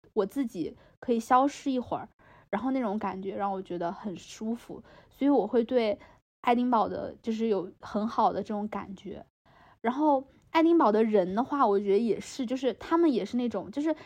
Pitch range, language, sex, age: 200-255 Hz, Chinese, female, 20-39